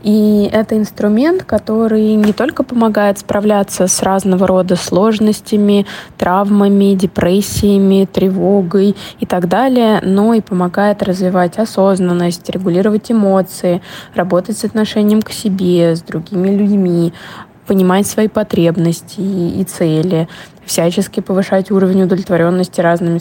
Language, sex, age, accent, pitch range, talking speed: Russian, female, 20-39, native, 175-205 Hz, 110 wpm